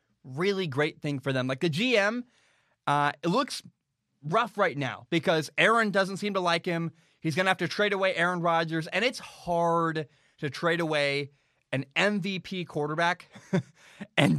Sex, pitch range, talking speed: male, 140-185 Hz, 165 wpm